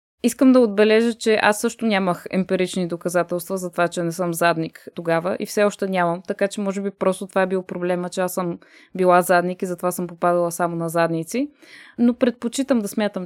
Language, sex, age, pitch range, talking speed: Bulgarian, female, 20-39, 180-235 Hz, 205 wpm